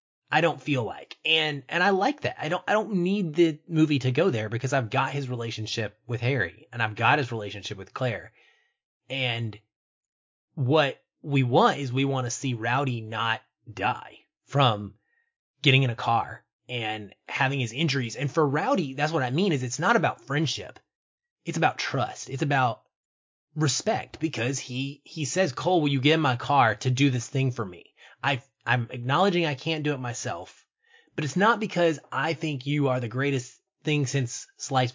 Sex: male